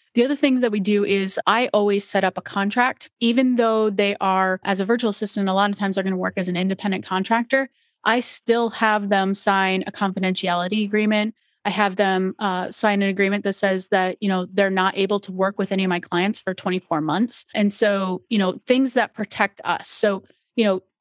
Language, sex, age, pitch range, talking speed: English, female, 30-49, 185-210 Hz, 220 wpm